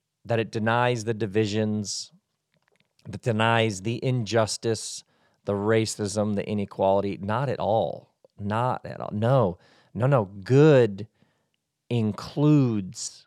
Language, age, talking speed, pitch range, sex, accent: English, 40-59, 110 wpm, 115-150 Hz, male, American